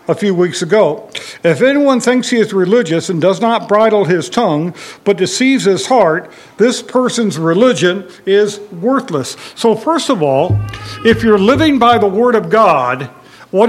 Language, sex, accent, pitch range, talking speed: English, male, American, 180-240 Hz, 165 wpm